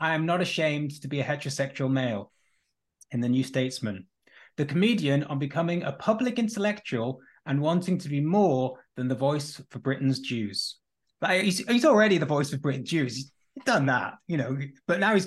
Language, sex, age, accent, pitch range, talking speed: English, male, 20-39, British, 130-175 Hz, 190 wpm